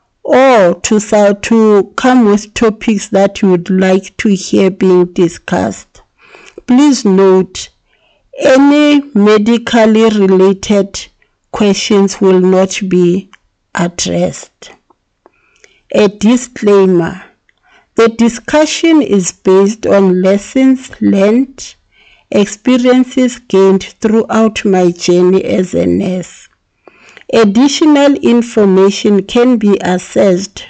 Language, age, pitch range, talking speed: English, 50-69, 190-235 Hz, 90 wpm